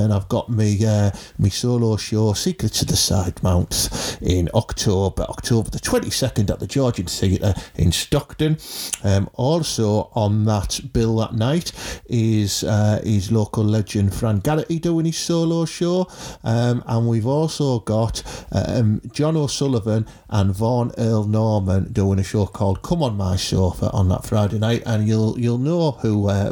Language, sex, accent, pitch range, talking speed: English, male, British, 100-125 Hz, 170 wpm